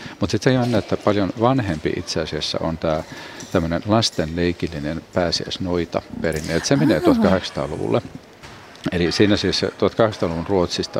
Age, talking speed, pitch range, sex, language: 50-69, 125 wpm, 85-100 Hz, male, Finnish